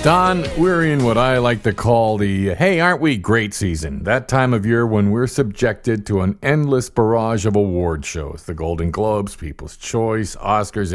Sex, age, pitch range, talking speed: male, 50-69, 95-125 Hz, 185 wpm